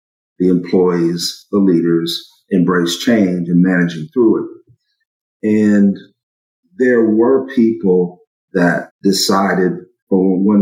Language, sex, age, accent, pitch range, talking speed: English, male, 50-69, American, 85-110 Hz, 100 wpm